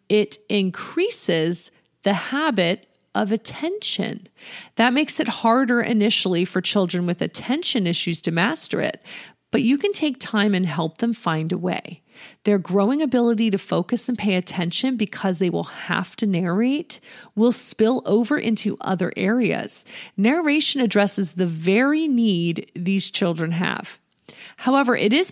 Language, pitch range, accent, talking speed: English, 180-245 Hz, American, 145 wpm